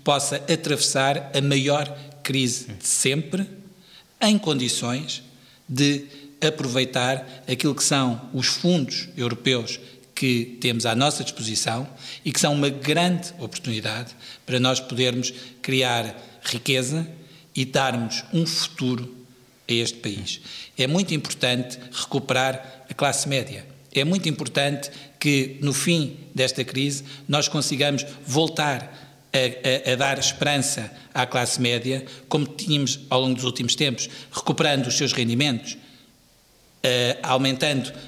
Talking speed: 120 wpm